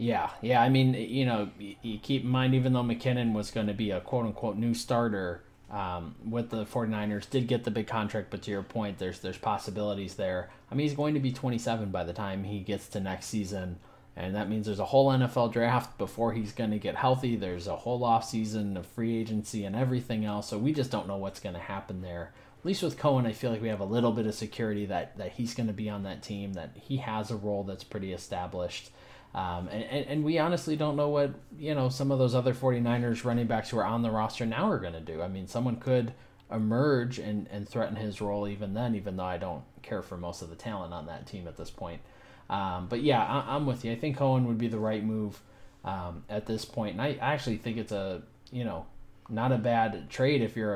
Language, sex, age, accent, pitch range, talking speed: English, male, 20-39, American, 100-125 Hz, 245 wpm